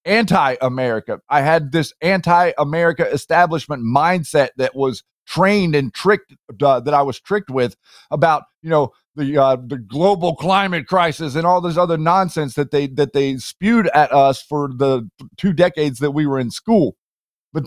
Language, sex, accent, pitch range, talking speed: English, male, American, 135-170 Hz, 165 wpm